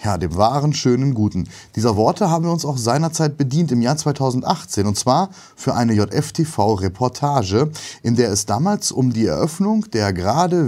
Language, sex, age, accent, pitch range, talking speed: German, male, 30-49, German, 105-150 Hz, 170 wpm